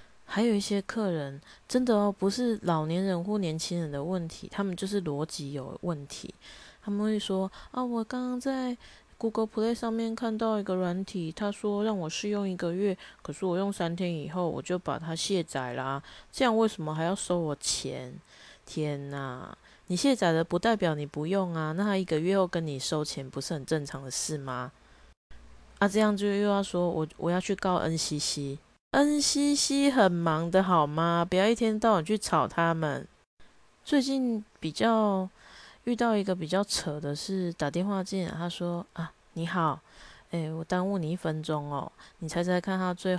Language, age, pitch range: Chinese, 20-39, 155-200 Hz